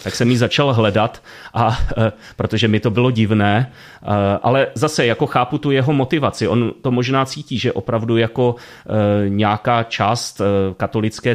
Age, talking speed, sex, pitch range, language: 30-49, 150 wpm, male, 105-120 Hz, Czech